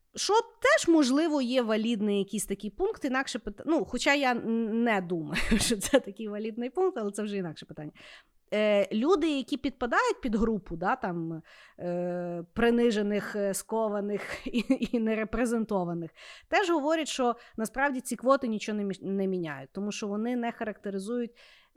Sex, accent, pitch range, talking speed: female, native, 195-270 Hz, 145 wpm